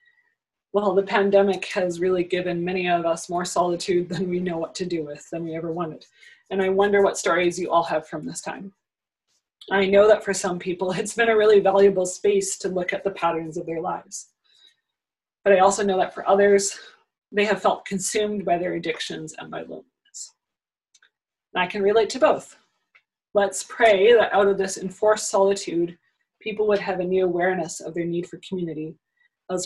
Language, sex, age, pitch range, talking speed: English, female, 30-49, 175-210 Hz, 195 wpm